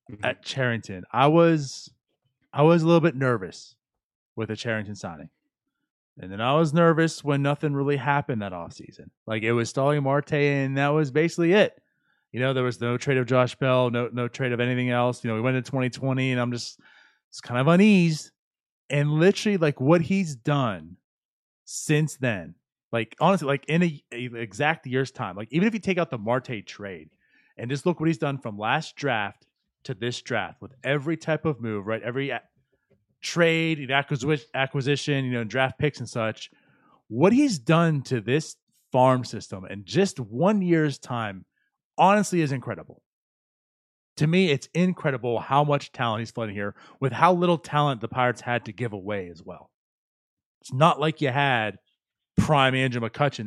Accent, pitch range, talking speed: American, 120-155 Hz, 185 wpm